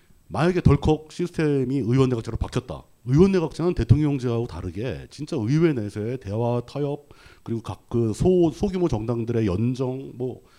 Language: Korean